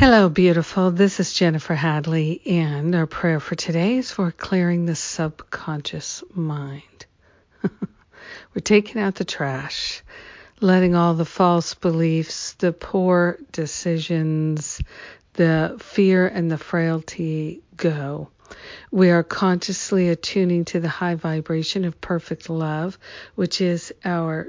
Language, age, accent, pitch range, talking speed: English, 50-69, American, 165-185 Hz, 125 wpm